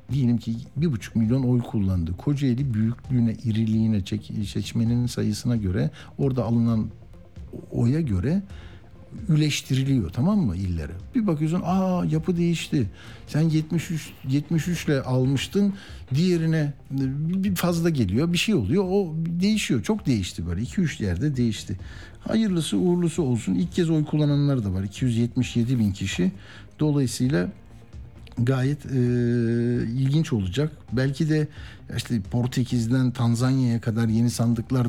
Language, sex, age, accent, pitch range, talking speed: Turkish, male, 60-79, native, 110-150 Hz, 120 wpm